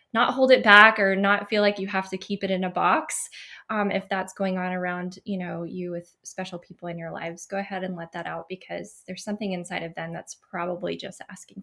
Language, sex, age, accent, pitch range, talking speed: English, female, 20-39, American, 185-220 Hz, 245 wpm